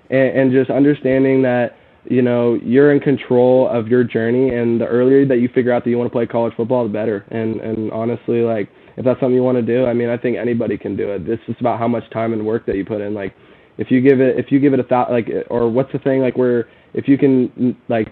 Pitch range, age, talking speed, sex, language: 115-125 Hz, 10-29, 270 wpm, male, English